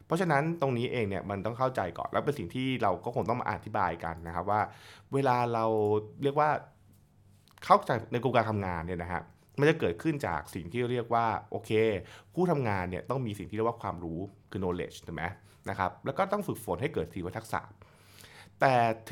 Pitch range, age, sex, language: 95-135 Hz, 20-39, male, Thai